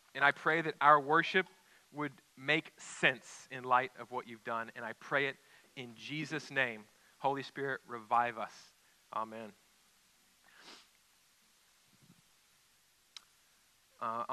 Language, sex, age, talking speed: English, male, 30-49, 115 wpm